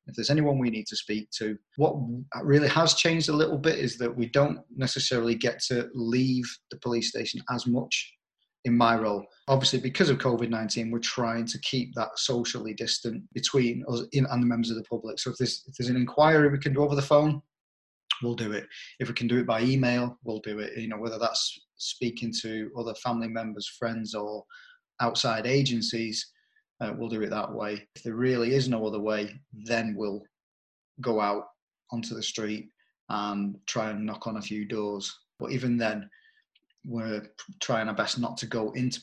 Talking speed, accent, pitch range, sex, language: 195 wpm, British, 115-135 Hz, male, English